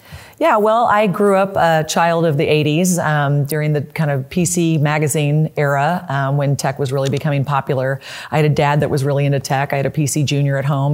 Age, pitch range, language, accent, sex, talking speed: 40-59, 135-155 Hz, English, American, female, 225 wpm